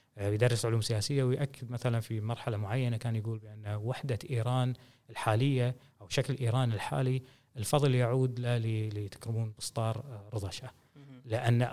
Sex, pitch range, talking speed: male, 110-130 Hz, 130 wpm